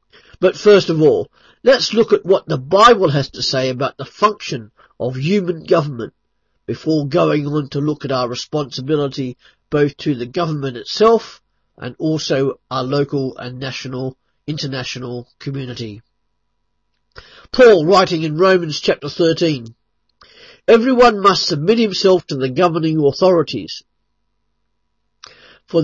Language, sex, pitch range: English, male, 135-185 Hz